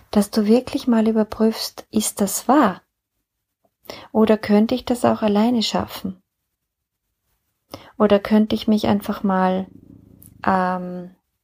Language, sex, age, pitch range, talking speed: German, female, 30-49, 180-220 Hz, 115 wpm